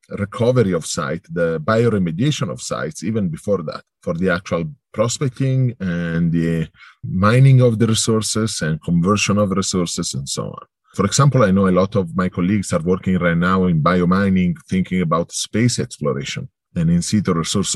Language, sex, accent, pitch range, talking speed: English, male, Italian, 85-110 Hz, 165 wpm